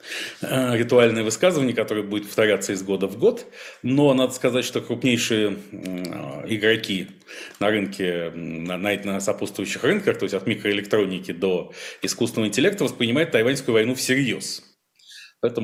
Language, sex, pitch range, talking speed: Russian, male, 95-115 Hz, 125 wpm